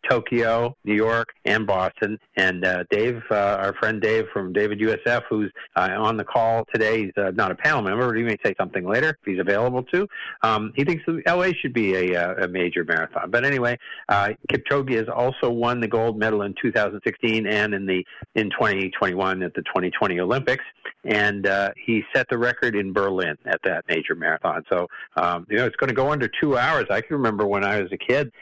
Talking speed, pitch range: 210 wpm, 100-120 Hz